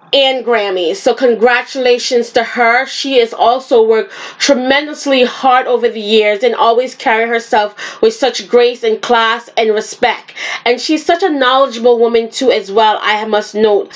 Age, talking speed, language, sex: 20-39, 165 wpm, English, female